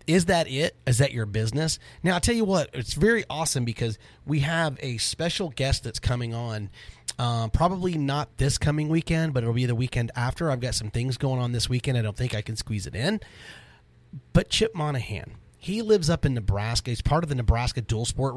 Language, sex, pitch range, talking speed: English, male, 115-150 Hz, 220 wpm